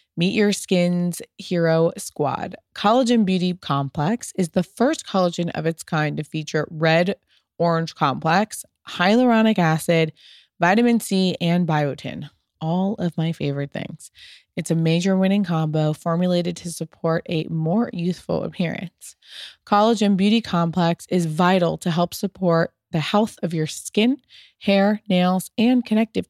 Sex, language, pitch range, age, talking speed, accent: female, English, 165-210 Hz, 20-39, 135 wpm, American